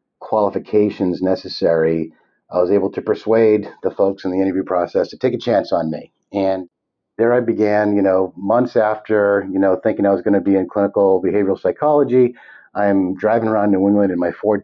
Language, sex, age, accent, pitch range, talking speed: English, male, 50-69, American, 90-105 Hz, 195 wpm